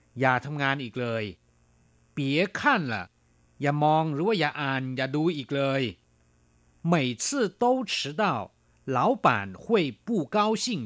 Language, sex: Thai, male